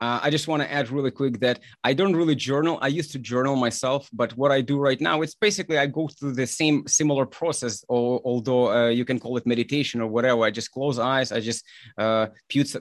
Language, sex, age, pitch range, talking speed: English, male, 30-49, 125-150 Hz, 235 wpm